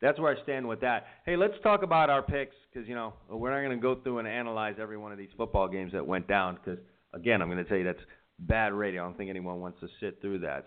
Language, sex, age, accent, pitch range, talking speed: English, male, 40-59, American, 100-125 Hz, 285 wpm